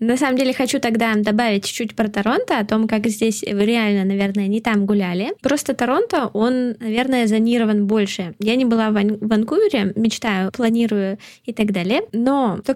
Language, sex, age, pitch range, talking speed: Russian, female, 20-39, 205-240 Hz, 170 wpm